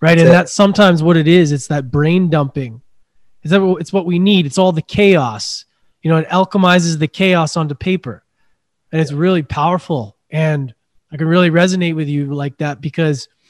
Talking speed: 190 wpm